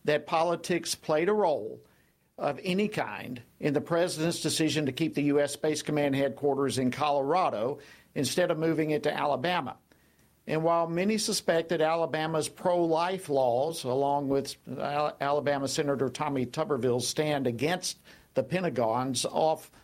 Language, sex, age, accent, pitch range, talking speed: English, male, 50-69, American, 140-175 Hz, 140 wpm